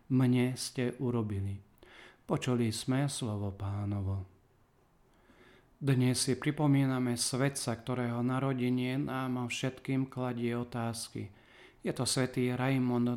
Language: Slovak